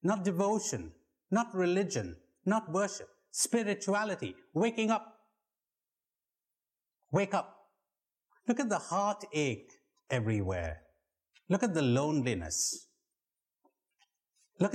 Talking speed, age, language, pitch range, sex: 85 wpm, 60-79, English, 125-185 Hz, male